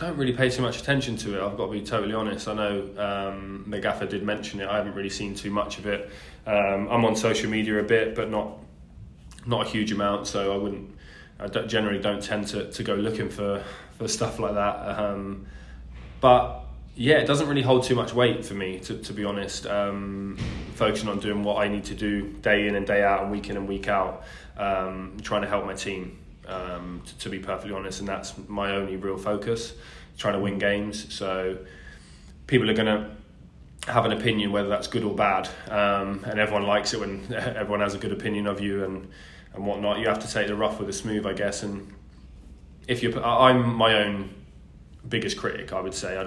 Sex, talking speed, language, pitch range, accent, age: male, 220 wpm, English, 95-105 Hz, British, 20-39